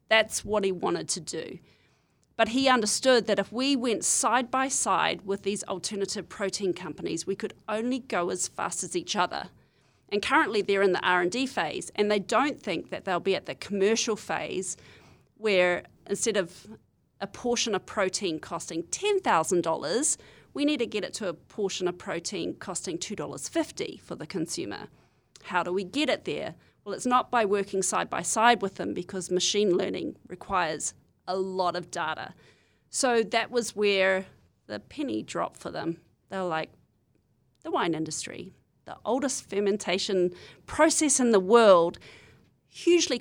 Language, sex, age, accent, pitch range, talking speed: English, female, 40-59, Australian, 180-235 Hz, 165 wpm